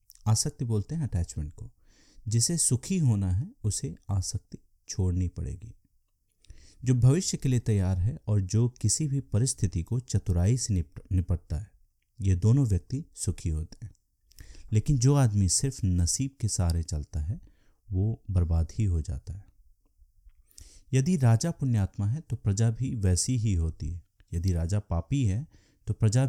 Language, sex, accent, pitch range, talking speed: Hindi, male, native, 90-120 Hz, 155 wpm